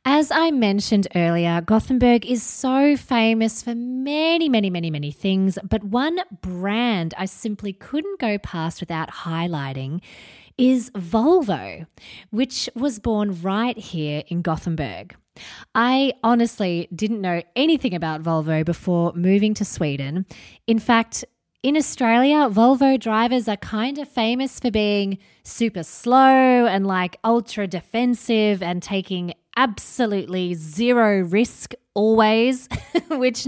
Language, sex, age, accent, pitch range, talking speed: English, female, 20-39, Australian, 180-255 Hz, 125 wpm